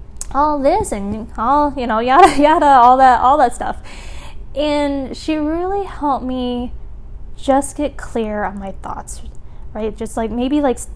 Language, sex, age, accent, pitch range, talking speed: English, female, 10-29, American, 210-265 Hz, 160 wpm